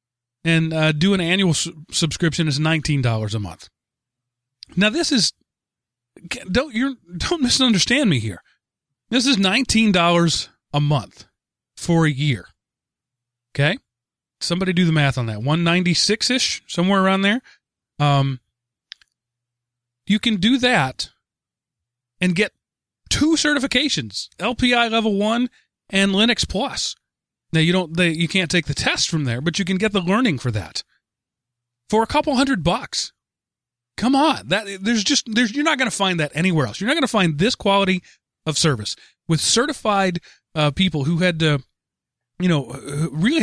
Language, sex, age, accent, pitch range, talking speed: English, male, 30-49, American, 145-215 Hz, 155 wpm